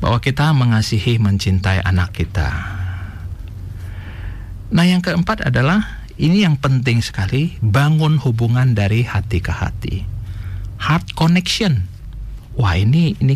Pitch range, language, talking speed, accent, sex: 100-165 Hz, Indonesian, 110 wpm, native, male